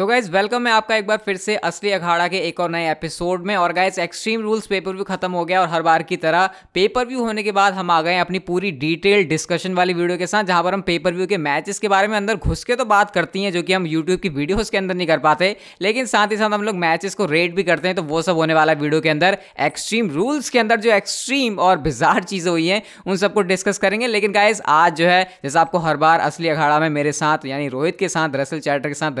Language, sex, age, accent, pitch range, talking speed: Hindi, female, 20-39, native, 155-195 Hz, 270 wpm